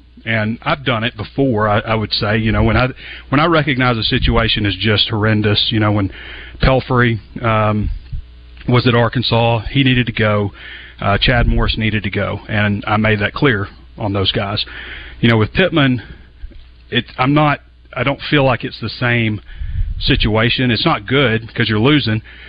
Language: English